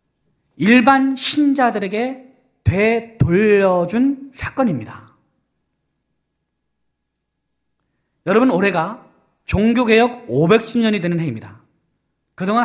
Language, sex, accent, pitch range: Korean, male, native, 140-210 Hz